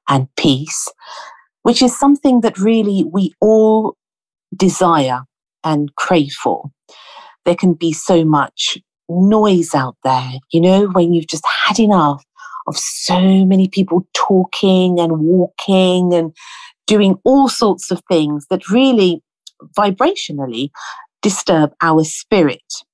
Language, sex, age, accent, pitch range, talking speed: English, female, 50-69, British, 155-225 Hz, 125 wpm